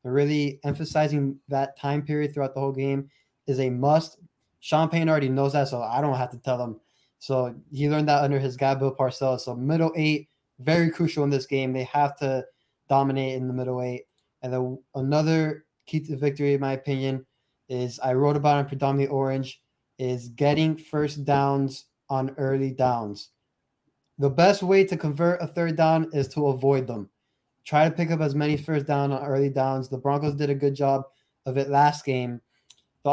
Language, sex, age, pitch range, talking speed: English, male, 20-39, 130-145 Hz, 195 wpm